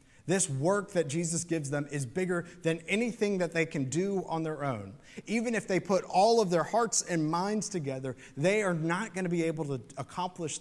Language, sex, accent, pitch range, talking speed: English, male, American, 135-175 Hz, 210 wpm